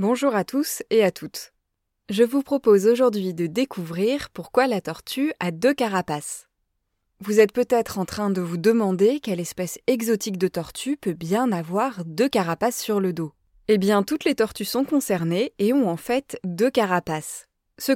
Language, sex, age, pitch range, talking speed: French, female, 20-39, 185-250 Hz, 175 wpm